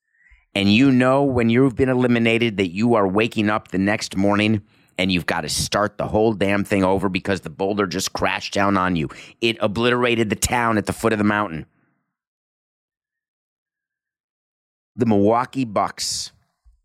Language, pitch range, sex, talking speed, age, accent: English, 105-130 Hz, male, 165 wpm, 30-49, American